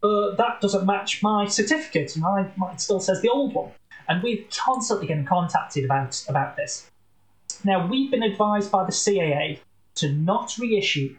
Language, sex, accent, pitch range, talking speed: English, male, British, 145-200 Hz, 170 wpm